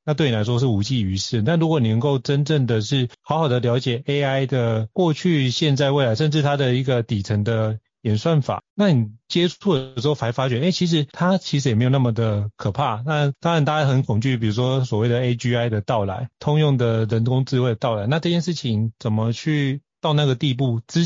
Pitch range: 115-145 Hz